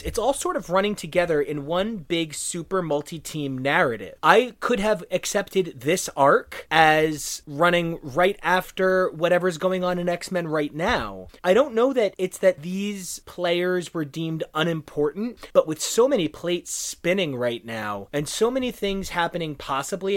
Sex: male